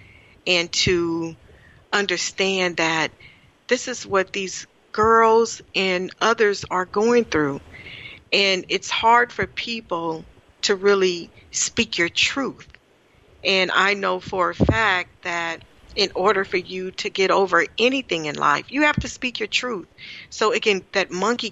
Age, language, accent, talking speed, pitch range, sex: 40-59, English, American, 145 wpm, 160-200 Hz, female